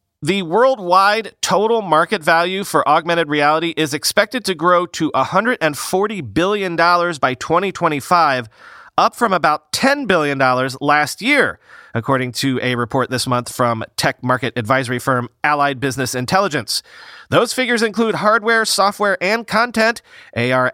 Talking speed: 135 wpm